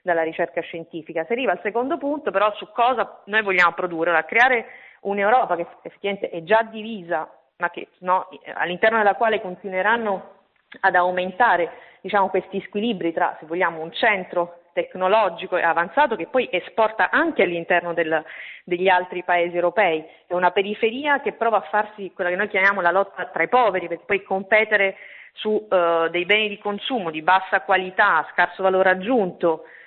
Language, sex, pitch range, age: Italian, female, 175-210 Hz, 30-49